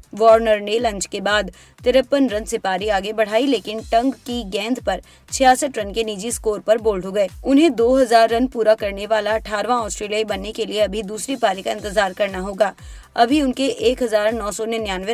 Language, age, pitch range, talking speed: Hindi, 20-39, 200-235 Hz, 185 wpm